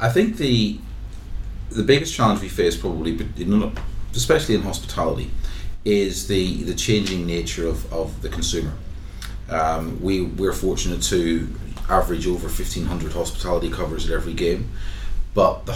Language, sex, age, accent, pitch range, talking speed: English, male, 30-49, British, 80-100 Hz, 135 wpm